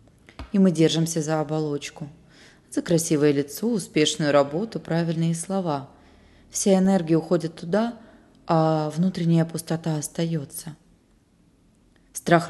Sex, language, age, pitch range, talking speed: female, Russian, 20-39, 145-170 Hz, 100 wpm